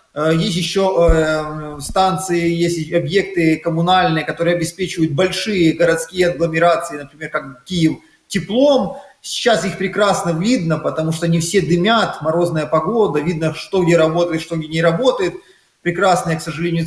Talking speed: 130 wpm